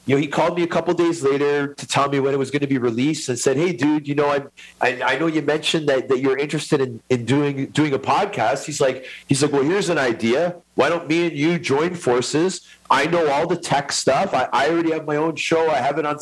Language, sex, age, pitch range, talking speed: English, male, 40-59, 140-170 Hz, 270 wpm